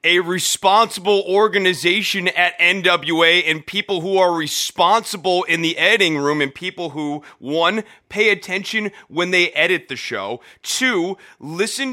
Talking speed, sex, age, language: 135 wpm, male, 30-49, English